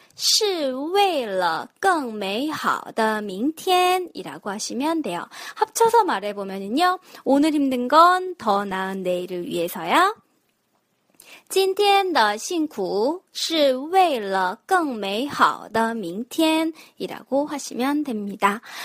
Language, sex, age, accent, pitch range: Korean, female, 20-39, native, 220-340 Hz